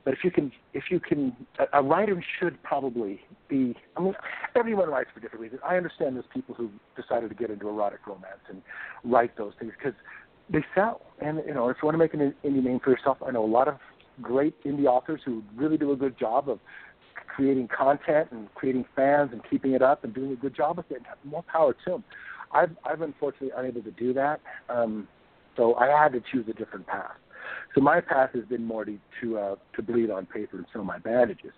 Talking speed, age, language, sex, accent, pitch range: 230 wpm, 60-79, English, male, American, 120-150 Hz